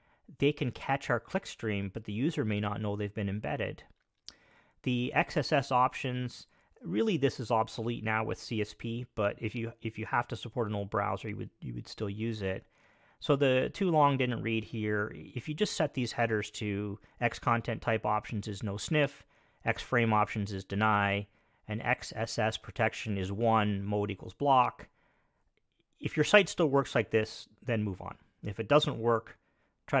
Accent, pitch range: American, 105-140 Hz